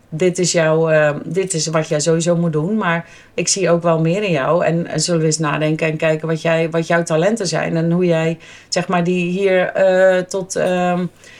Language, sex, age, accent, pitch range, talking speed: Dutch, female, 40-59, Dutch, 155-180 Hz, 225 wpm